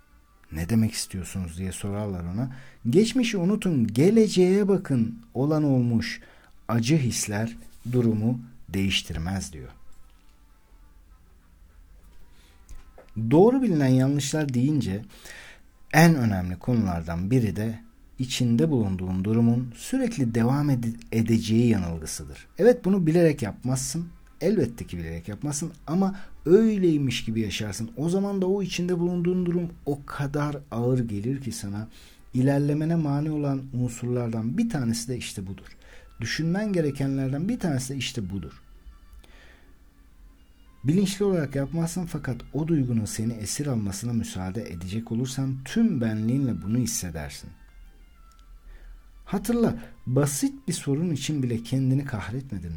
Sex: male